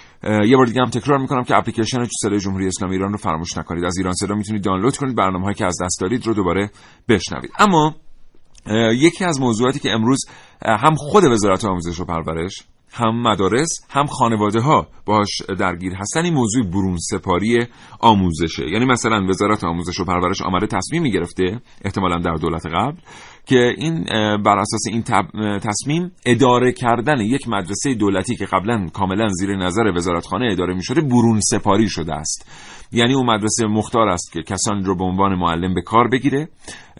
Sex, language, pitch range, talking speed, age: male, Persian, 95-120 Hz, 160 wpm, 40-59